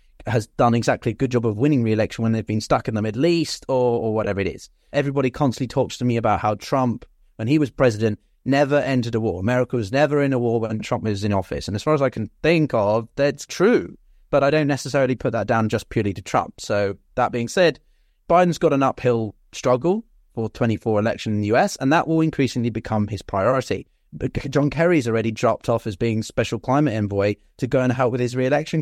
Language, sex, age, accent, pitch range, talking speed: English, male, 30-49, British, 110-140 Hz, 230 wpm